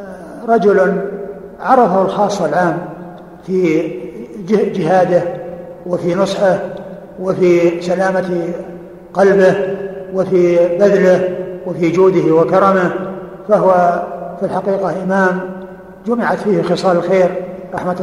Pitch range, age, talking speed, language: 180-195 Hz, 60-79, 85 wpm, Arabic